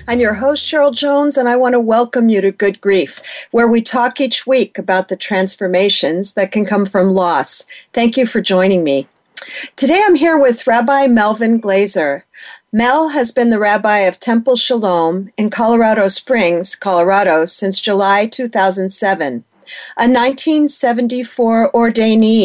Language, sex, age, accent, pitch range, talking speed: English, female, 50-69, American, 190-245 Hz, 150 wpm